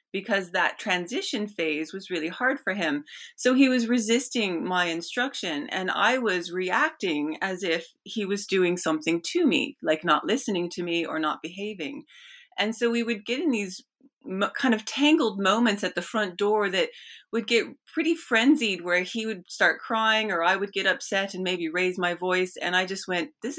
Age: 30-49